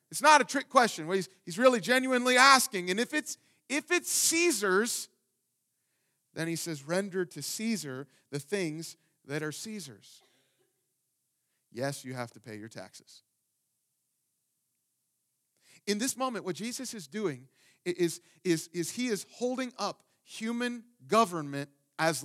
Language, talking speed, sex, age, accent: English, 135 wpm, male, 40-59, American